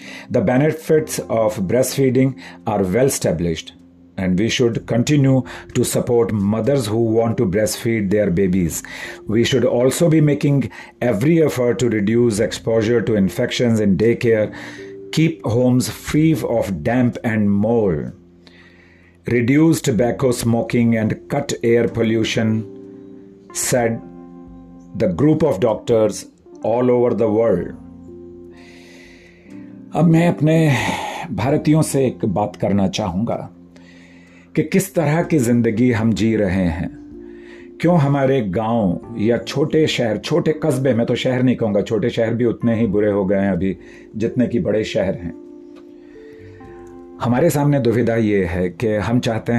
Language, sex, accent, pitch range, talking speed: Hindi, male, native, 100-130 Hz, 135 wpm